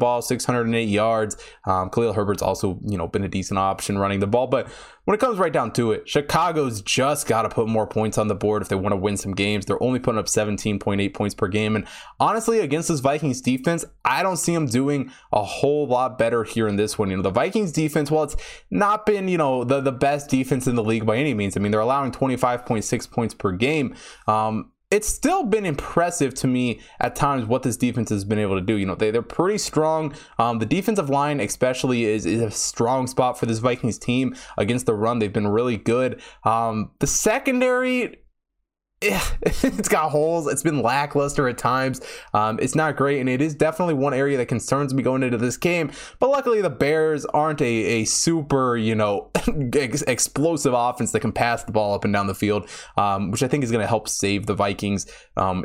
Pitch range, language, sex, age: 110-145 Hz, English, male, 20-39